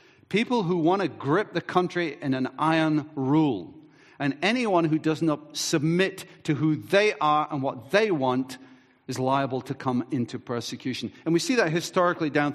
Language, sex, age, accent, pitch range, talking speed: English, male, 50-69, British, 135-170 Hz, 175 wpm